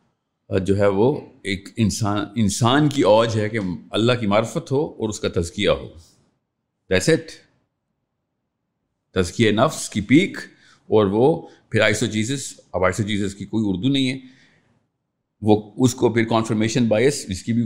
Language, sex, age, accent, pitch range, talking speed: English, male, 50-69, Indian, 100-130 Hz, 160 wpm